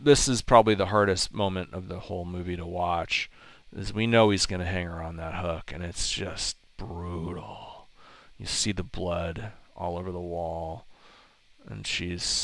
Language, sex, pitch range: English, male, 90-105 Hz